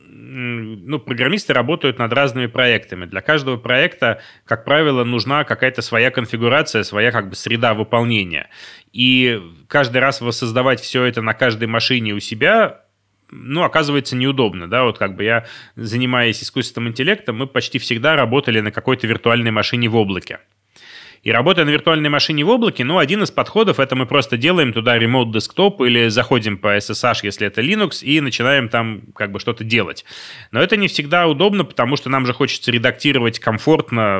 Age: 30-49